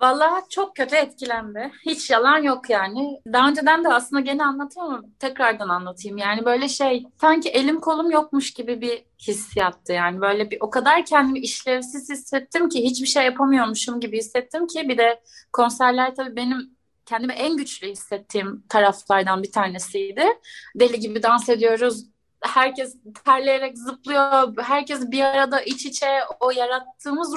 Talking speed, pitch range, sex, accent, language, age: 145 wpm, 235-275 Hz, female, native, Turkish, 30-49